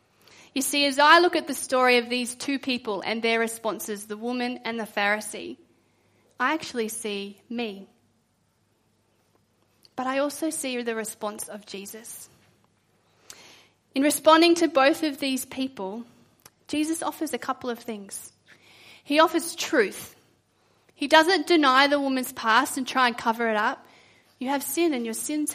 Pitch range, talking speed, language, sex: 235-315 Hz, 155 wpm, English, female